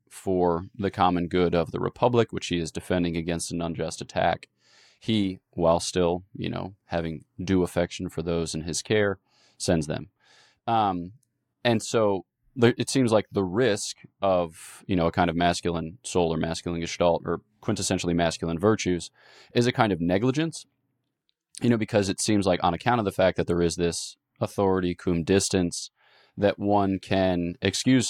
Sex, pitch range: male, 85-105 Hz